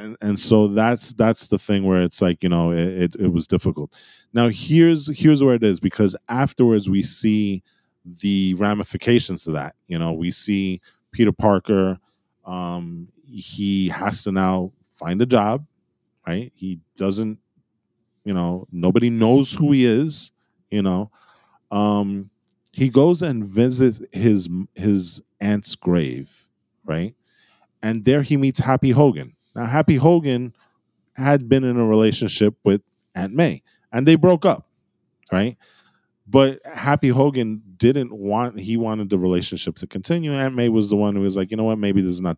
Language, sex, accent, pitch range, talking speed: English, male, American, 95-130 Hz, 165 wpm